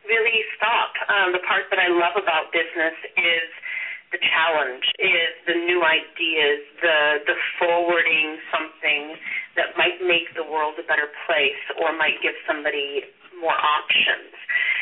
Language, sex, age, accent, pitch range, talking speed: English, female, 30-49, American, 160-250 Hz, 140 wpm